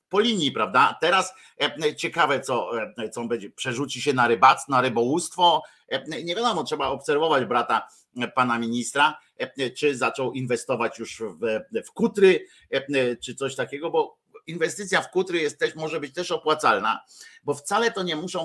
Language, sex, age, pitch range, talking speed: Polish, male, 50-69, 130-195 Hz, 170 wpm